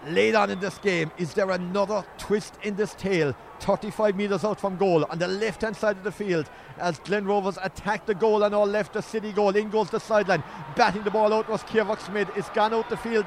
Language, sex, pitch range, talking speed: English, male, 215-255 Hz, 240 wpm